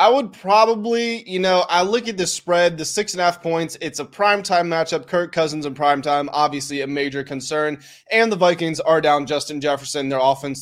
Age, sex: 20-39, male